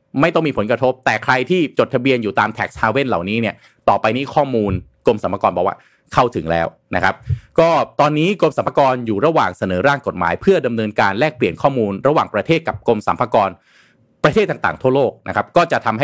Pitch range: 110-145 Hz